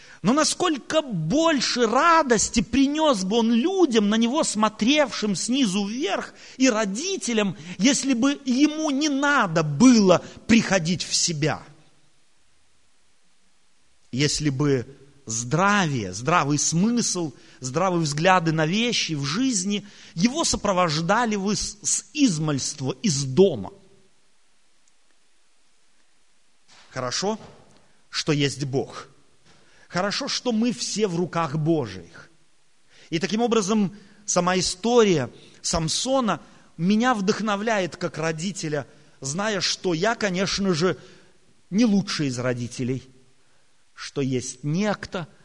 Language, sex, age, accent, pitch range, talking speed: Russian, male, 30-49, native, 155-235 Hz, 100 wpm